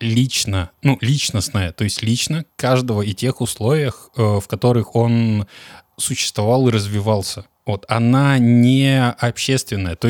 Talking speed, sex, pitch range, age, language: 125 wpm, male, 105-130 Hz, 20-39, Russian